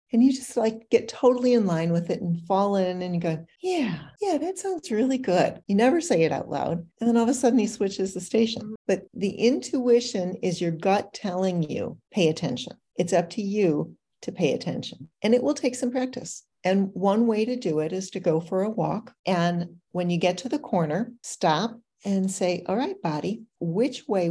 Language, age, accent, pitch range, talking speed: English, 40-59, American, 170-225 Hz, 215 wpm